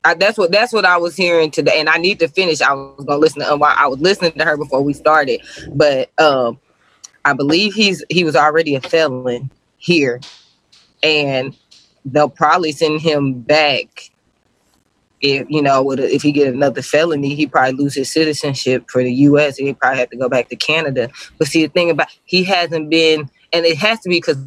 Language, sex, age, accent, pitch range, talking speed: English, female, 20-39, American, 140-165 Hz, 205 wpm